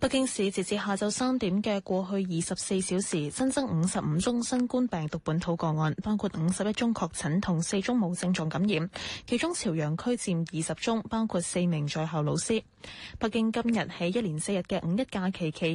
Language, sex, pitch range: Chinese, female, 170-225 Hz